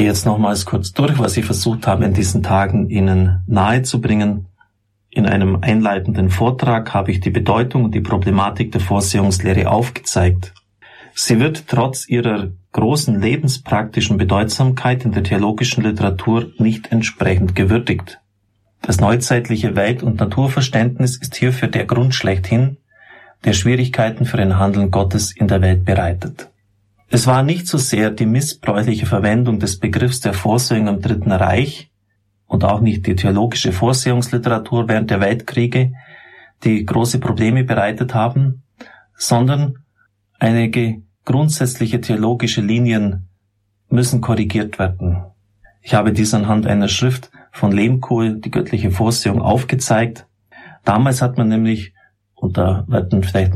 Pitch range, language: 100-120 Hz, German